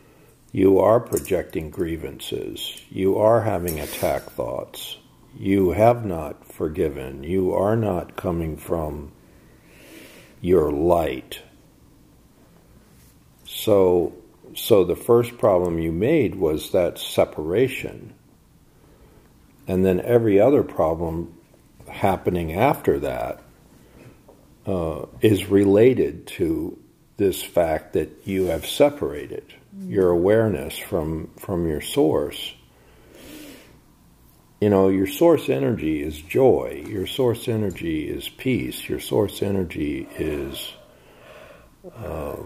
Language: English